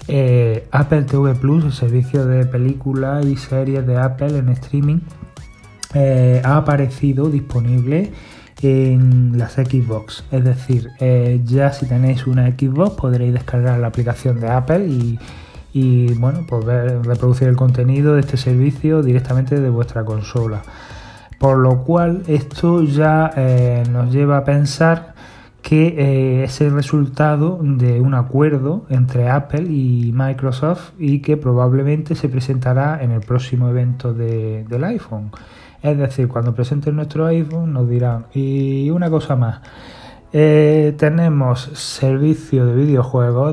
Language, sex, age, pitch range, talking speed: Spanish, male, 30-49, 125-145 Hz, 135 wpm